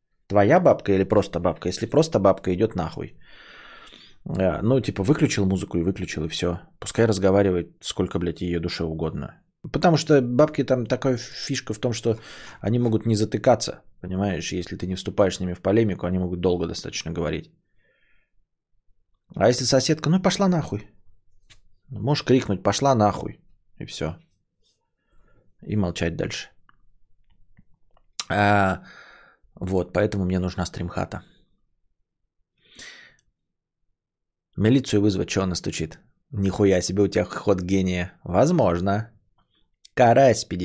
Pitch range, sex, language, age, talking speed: 90-125 Hz, male, Bulgarian, 20-39, 130 wpm